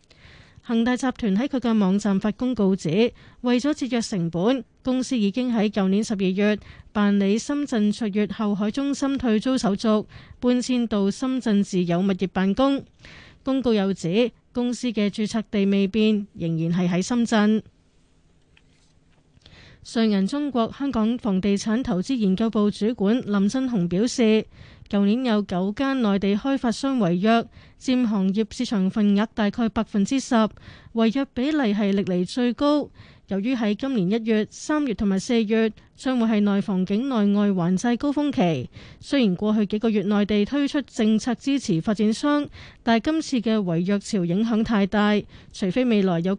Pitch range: 200-245 Hz